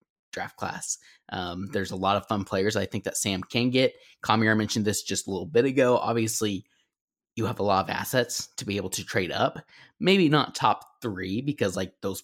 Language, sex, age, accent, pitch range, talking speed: English, male, 20-39, American, 95-120 Hz, 210 wpm